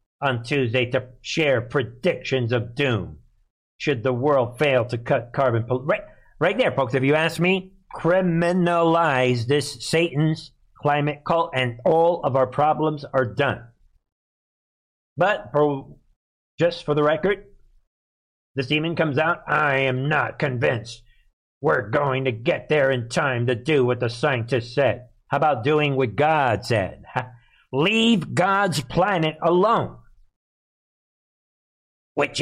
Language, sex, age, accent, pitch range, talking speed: English, male, 50-69, American, 125-155 Hz, 135 wpm